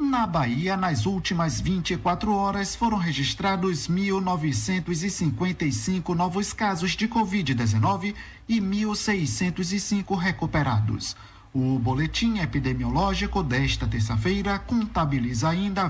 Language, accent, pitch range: Portuguese, Brazilian, 140-195 Hz